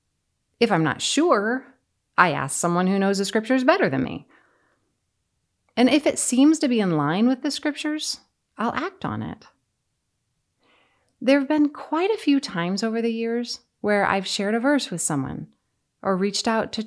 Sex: female